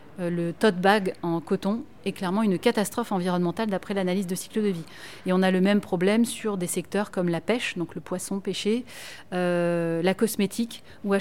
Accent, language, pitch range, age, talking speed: French, French, 185-225 Hz, 30-49, 200 wpm